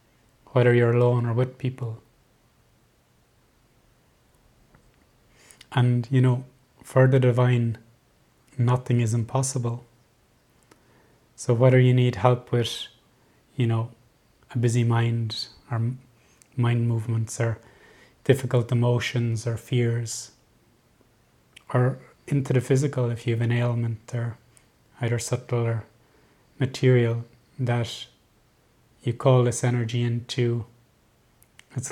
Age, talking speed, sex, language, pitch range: 20-39, 105 wpm, male, English, 115-125 Hz